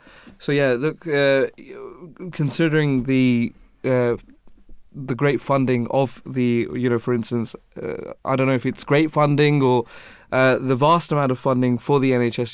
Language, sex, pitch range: English, male, 125-140 Hz